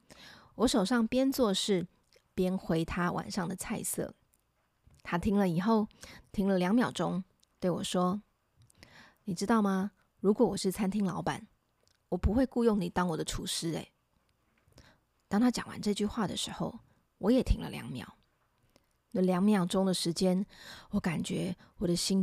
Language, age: Chinese, 20-39